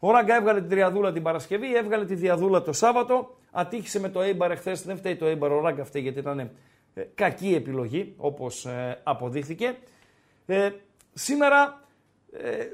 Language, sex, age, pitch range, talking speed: Greek, male, 50-69, 155-235 Hz, 155 wpm